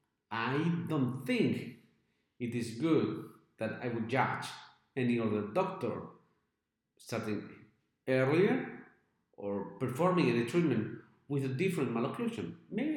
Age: 50-69